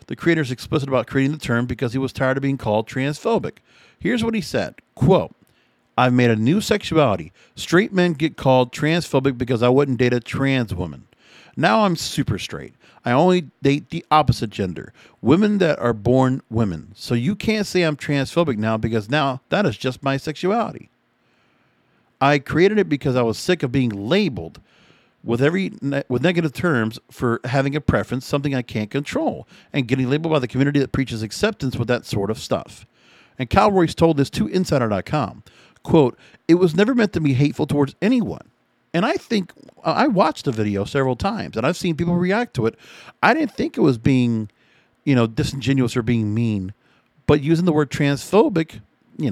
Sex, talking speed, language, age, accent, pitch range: male, 190 wpm, English, 50-69, American, 120-165 Hz